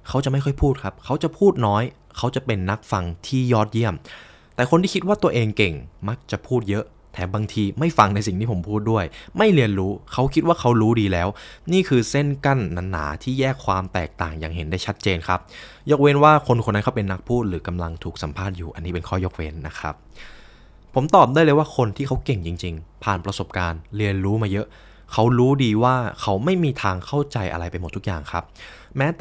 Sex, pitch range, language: male, 90-130 Hz, Thai